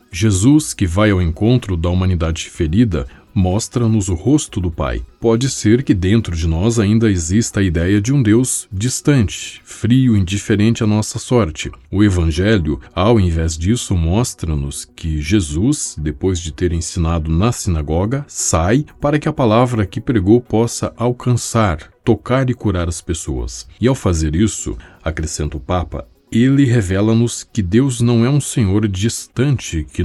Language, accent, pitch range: Portuguese, Brazilian, 85-115 Hz